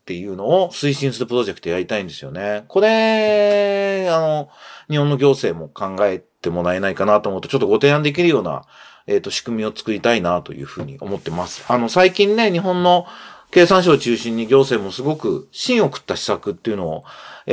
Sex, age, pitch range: male, 40-59, 110-185 Hz